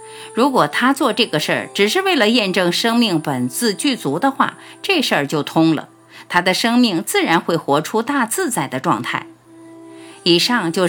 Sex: female